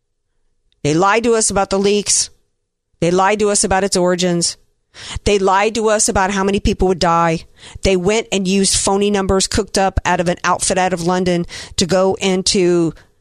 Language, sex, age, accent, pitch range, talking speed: English, female, 50-69, American, 165-195 Hz, 190 wpm